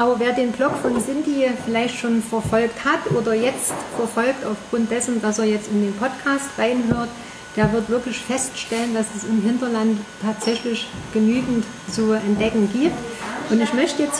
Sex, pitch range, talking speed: female, 220-265 Hz, 165 wpm